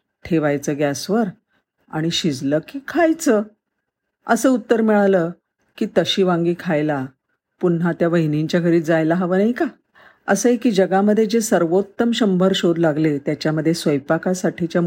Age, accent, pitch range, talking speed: 50-69, native, 150-195 Hz, 125 wpm